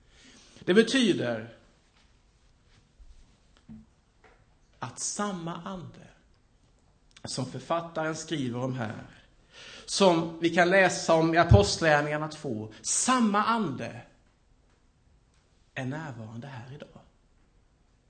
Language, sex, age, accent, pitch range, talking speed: Swedish, male, 60-79, Norwegian, 120-185 Hz, 80 wpm